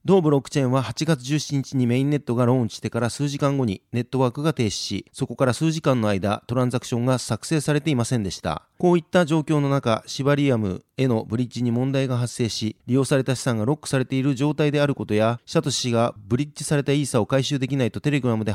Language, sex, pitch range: Japanese, male, 120-150 Hz